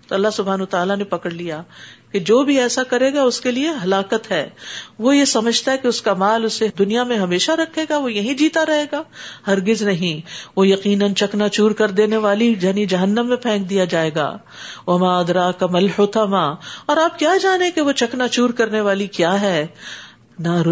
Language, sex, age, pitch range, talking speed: Urdu, female, 50-69, 190-265 Hz, 210 wpm